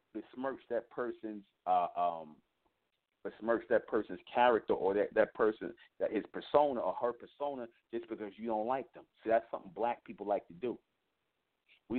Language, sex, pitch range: English, male, 100-120 Hz